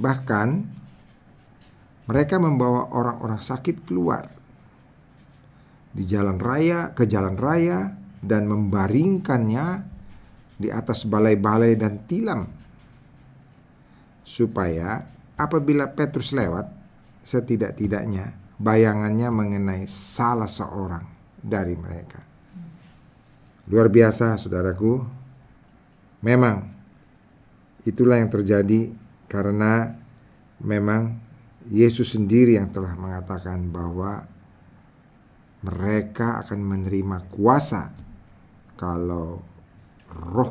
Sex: male